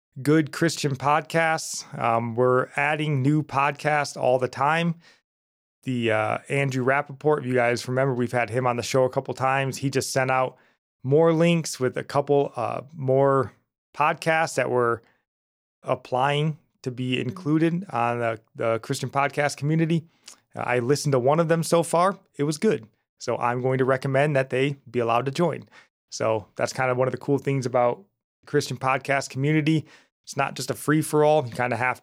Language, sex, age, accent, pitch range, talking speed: English, male, 30-49, American, 120-145 Hz, 180 wpm